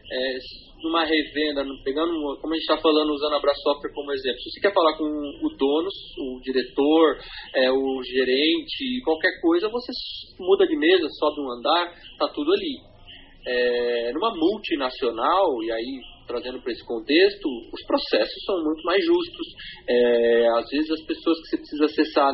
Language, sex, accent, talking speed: Portuguese, male, Brazilian, 165 wpm